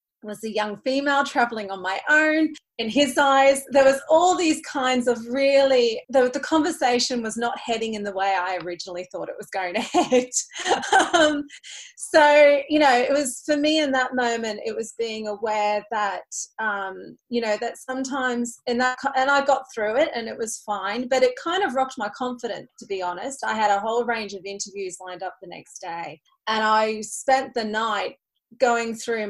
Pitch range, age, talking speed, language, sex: 200-265 Hz, 30-49, 195 wpm, English, female